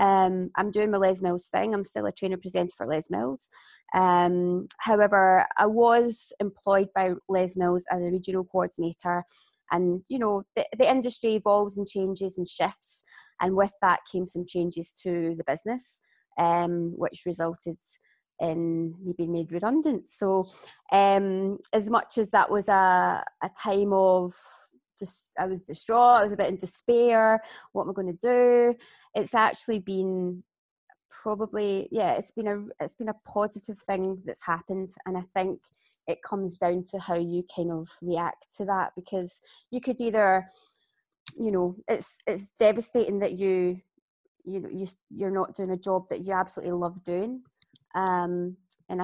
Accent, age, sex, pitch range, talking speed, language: British, 20-39, female, 180-205 Hz, 165 wpm, English